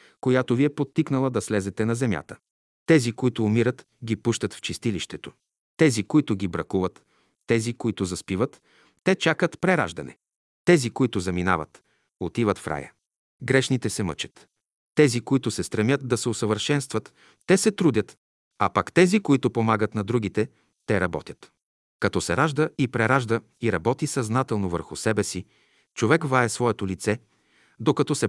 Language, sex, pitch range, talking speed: Bulgarian, male, 105-135 Hz, 150 wpm